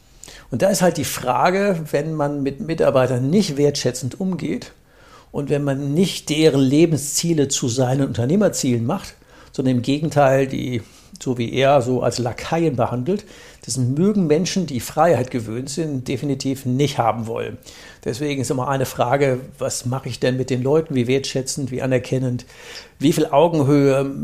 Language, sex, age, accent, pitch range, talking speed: German, male, 60-79, German, 125-155 Hz, 160 wpm